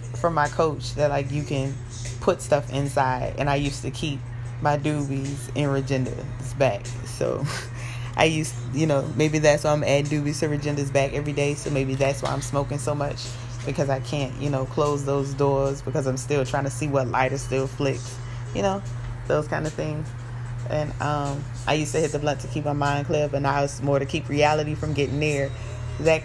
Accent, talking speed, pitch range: American, 210 wpm, 120-145 Hz